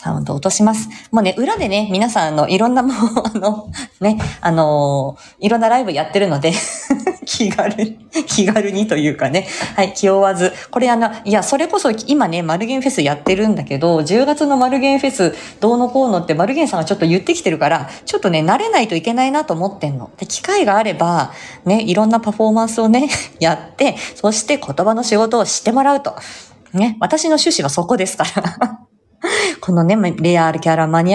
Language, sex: Japanese, female